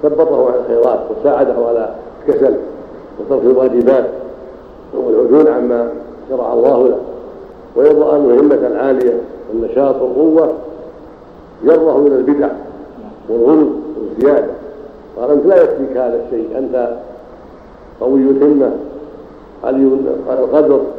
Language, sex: Arabic, male